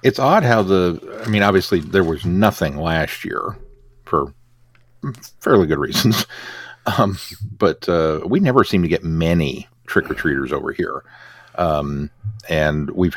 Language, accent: English, American